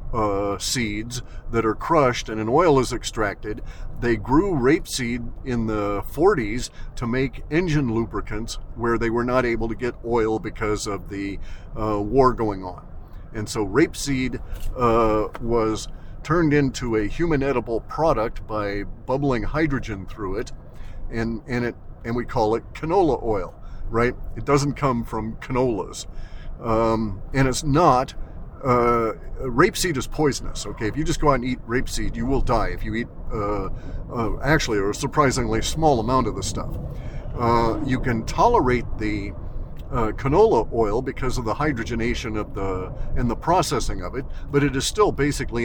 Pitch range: 105-130 Hz